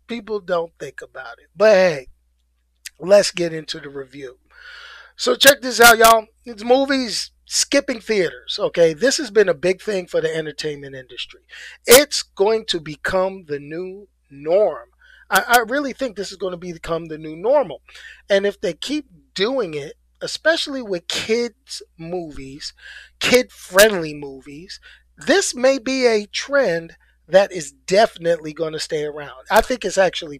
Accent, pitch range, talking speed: American, 145-220 Hz, 155 wpm